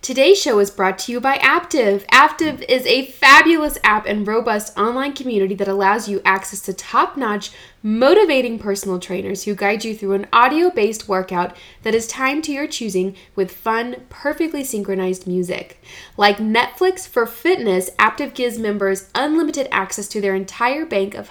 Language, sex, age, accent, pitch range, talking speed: English, female, 20-39, American, 195-275 Hz, 165 wpm